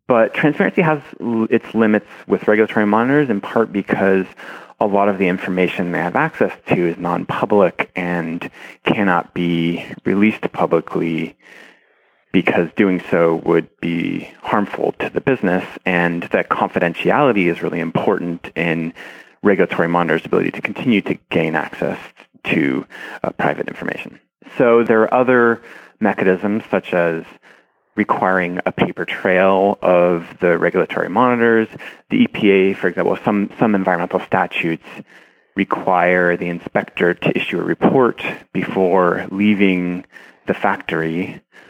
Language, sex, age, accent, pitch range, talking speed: English, male, 30-49, American, 85-110 Hz, 130 wpm